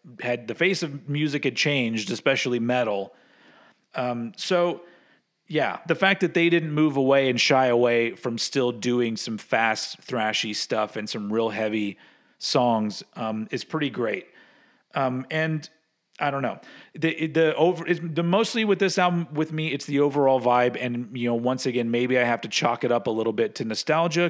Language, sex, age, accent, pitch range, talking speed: English, male, 40-59, American, 115-150 Hz, 185 wpm